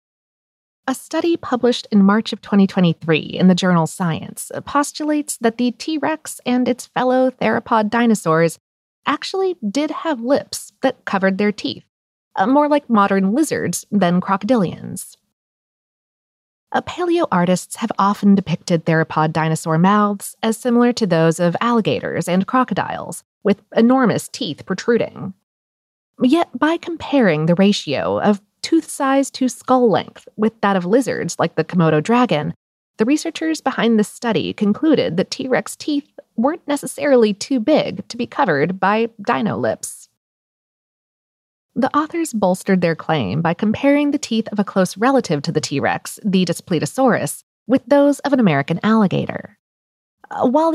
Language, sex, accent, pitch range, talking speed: English, female, American, 185-260 Hz, 140 wpm